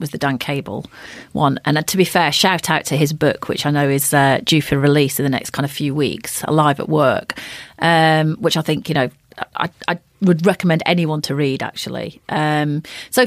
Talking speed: 215 wpm